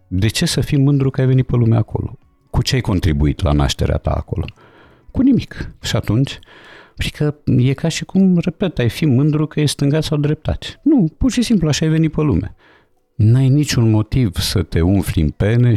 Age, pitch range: 50-69, 80-120 Hz